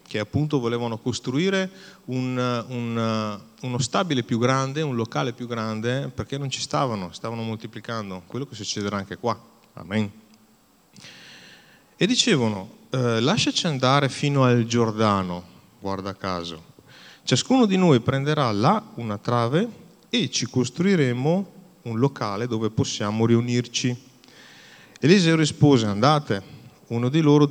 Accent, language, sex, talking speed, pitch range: native, Italian, male, 120 wpm, 110-145 Hz